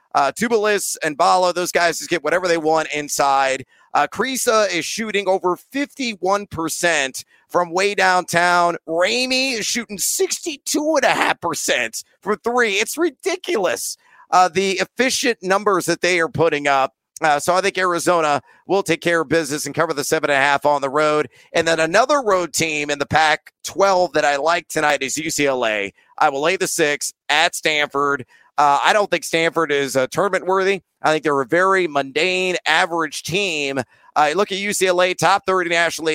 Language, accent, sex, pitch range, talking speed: English, American, male, 155-200 Hz, 170 wpm